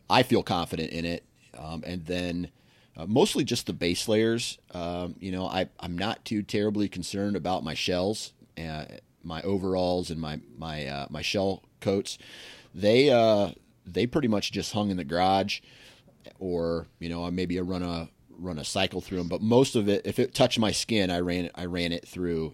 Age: 30-49